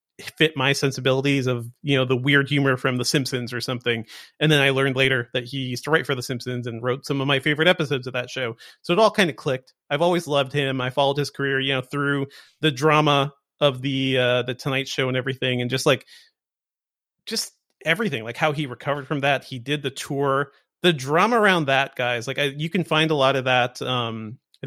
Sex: male